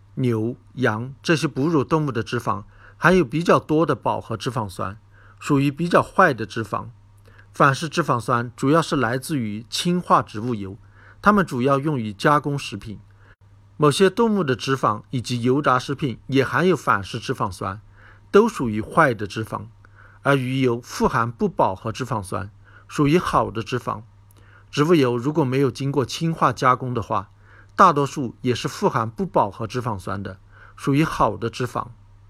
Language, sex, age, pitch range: Chinese, male, 50-69, 105-145 Hz